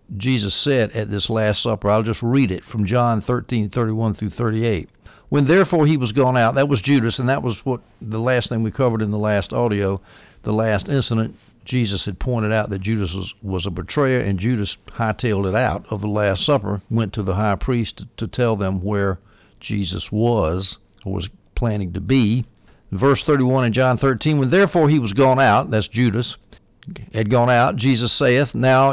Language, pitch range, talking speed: English, 105-130 Hz, 195 wpm